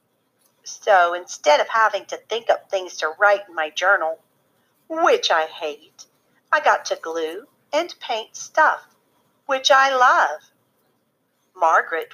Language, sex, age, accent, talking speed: English, female, 50-69, American, 135 wpm